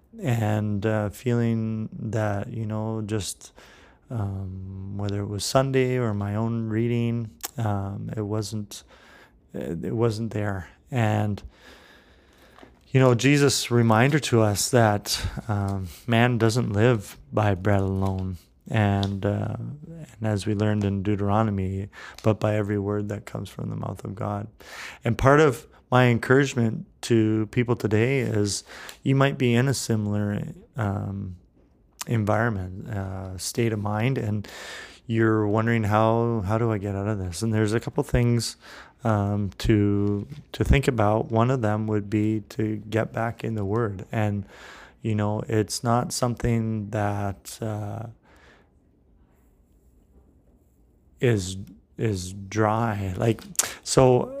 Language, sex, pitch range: English, male, 100-115 Hz